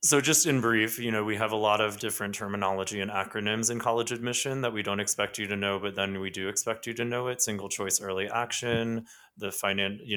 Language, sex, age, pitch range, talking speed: English, male, 20-39, 95-115 Hz, 240 wpm